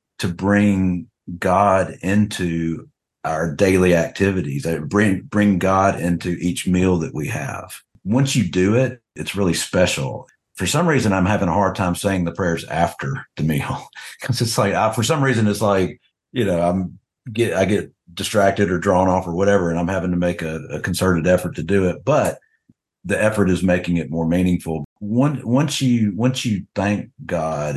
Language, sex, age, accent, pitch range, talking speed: English, male, 50-69, American, 85-100 Hz, 185 wpm